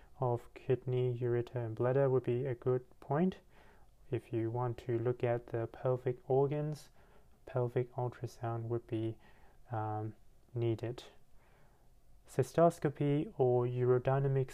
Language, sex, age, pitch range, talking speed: English, male, 30-49, 115-135 Hz, 115 wpm